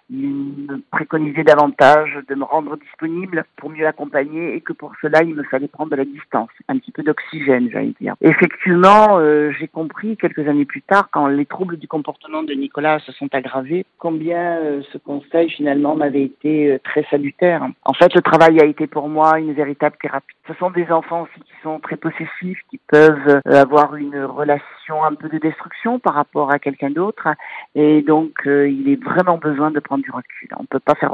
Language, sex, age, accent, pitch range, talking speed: French, male, 60-79, French, 140-165 Hz, 205 wpm